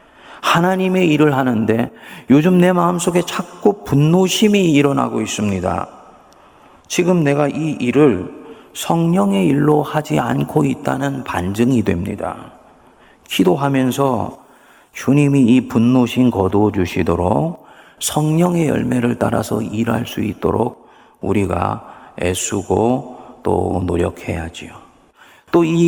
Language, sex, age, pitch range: Korean, male, 40-59, 115-160 Hz